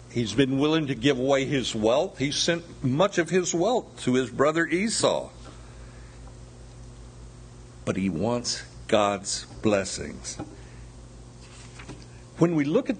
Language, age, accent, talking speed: English, 60-79, American, 125 wpm